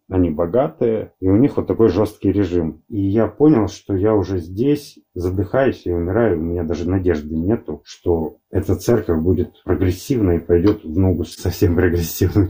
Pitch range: 85-110 Hz